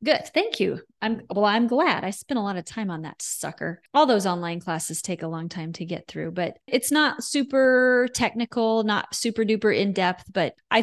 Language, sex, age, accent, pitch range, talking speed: English, female, 30-49, American, 180-225 Hz, 215 wpm